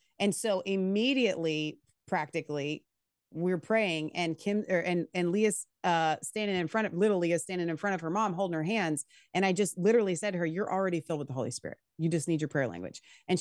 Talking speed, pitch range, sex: 220 wpm, 165-210 Hz, female